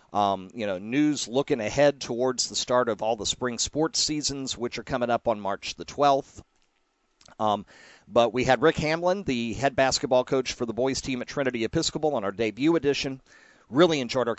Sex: male